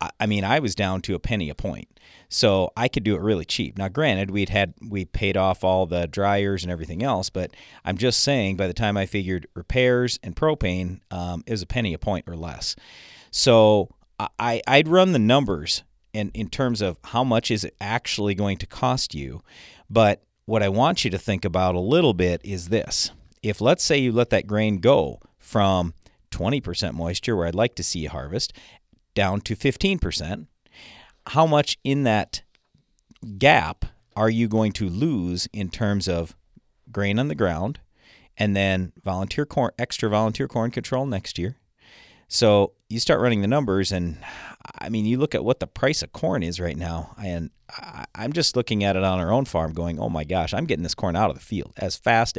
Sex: male